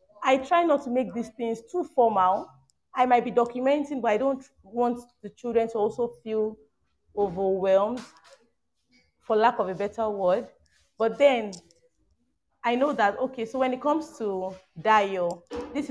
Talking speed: 160 wpm